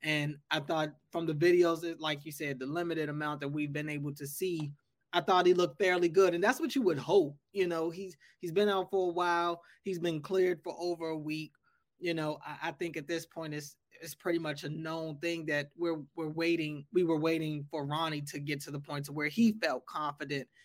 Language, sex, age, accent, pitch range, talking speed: English, male, 20-39, American, 150-185 Hz, 235 wpm